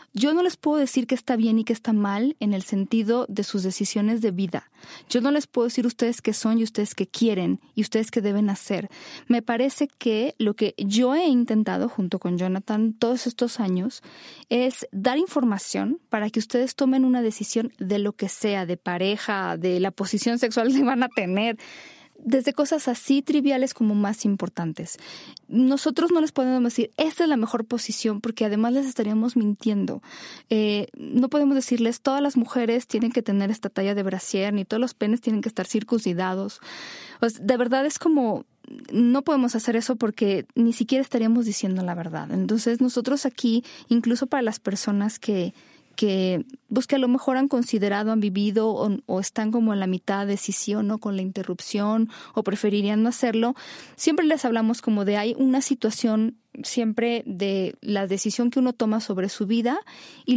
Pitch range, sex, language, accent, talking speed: 210-255 Hz, female, Spanish, Mexican, 185 wpm